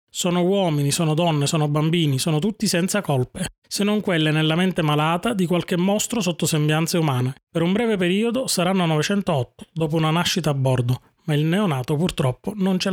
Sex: male